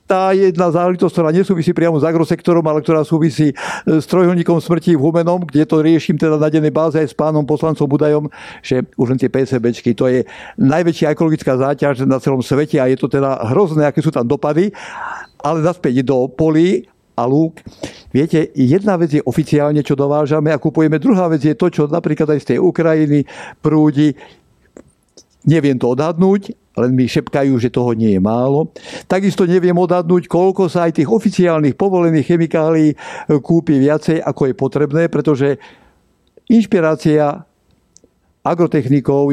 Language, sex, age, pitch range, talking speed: Slovak, male, 60-79, 140-170 Hz, 160 wpm